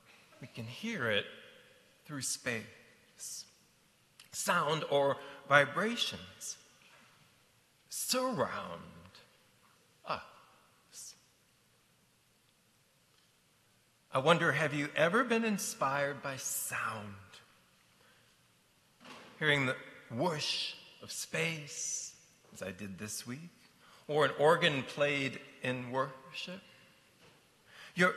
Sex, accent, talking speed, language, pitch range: male, American, 80 wpm, English, 115-165 Hz